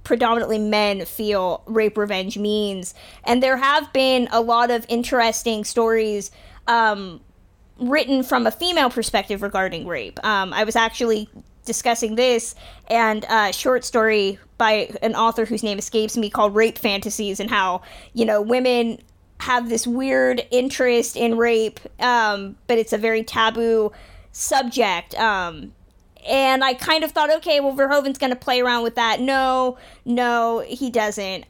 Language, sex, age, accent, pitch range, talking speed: English, female, 20-39, American, 225-265 Hz, 150 wpm